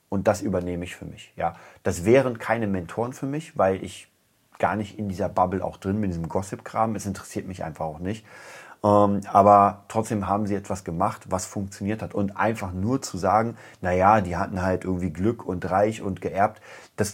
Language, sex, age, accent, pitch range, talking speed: German, male, 30-49, German, 95-110 Hz, 205 wpm